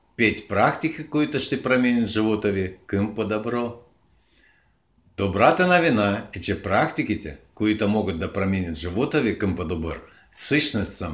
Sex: male